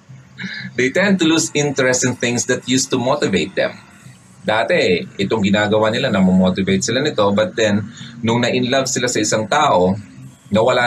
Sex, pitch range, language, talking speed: male, 100-135 Hz, Filipino, 160 wpm